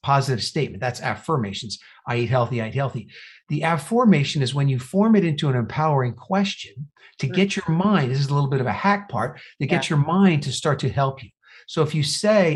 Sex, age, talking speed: male, 50-69, 225 wpm